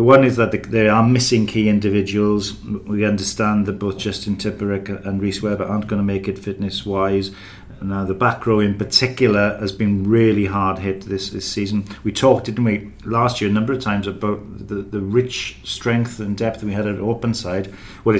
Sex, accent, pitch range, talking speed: male, British, 100-120 Hz, 200 wpm